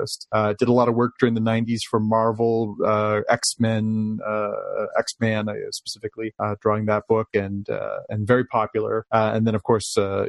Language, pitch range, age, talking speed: English, 110-130 Hz, 30-49, 190 wpm